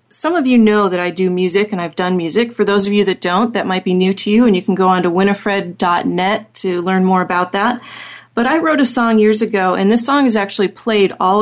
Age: 30-49